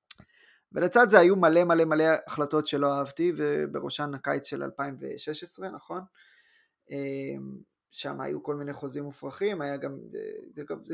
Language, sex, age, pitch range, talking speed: Hebrew, male, 20-39, 140-170 Hz, 130 wpm